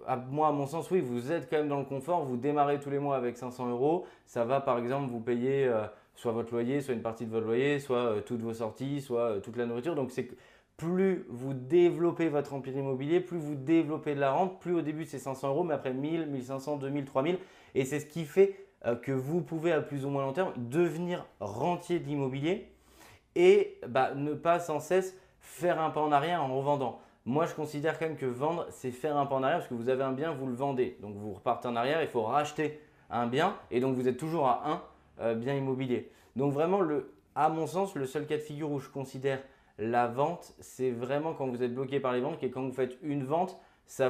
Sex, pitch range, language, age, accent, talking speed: male, 130-160 Hz, French, 20-39, French, 235 wpm